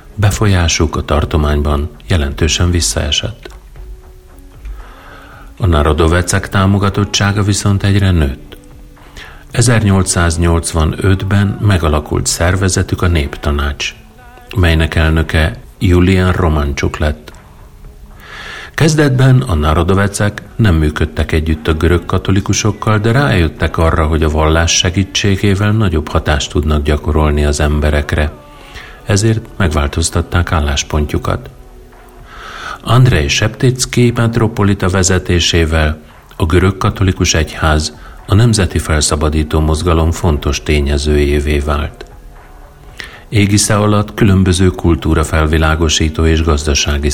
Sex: male